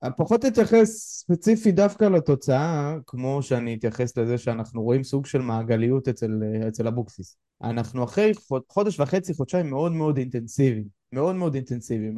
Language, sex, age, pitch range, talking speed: Hebrew, male, 20-39, 115-155 Hz, 135 wpm